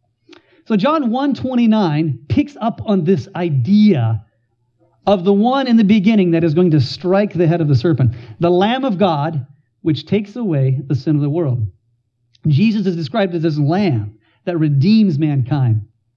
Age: 40-59